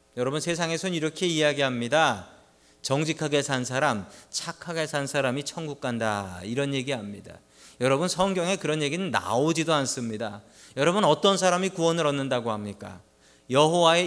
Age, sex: 40-59, male